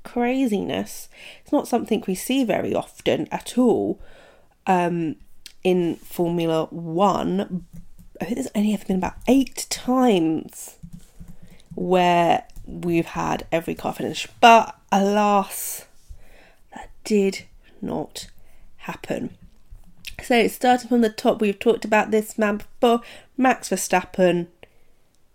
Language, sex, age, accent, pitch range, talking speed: English, female, 30-49, British, 180-230 Hz, 115 wpm